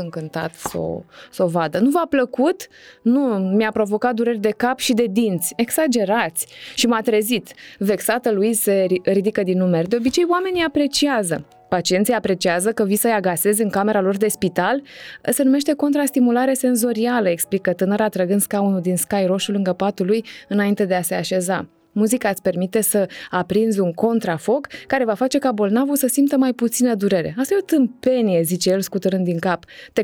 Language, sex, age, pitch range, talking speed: Romanian, female, 20-39, 190-245 Hz, 180 wpm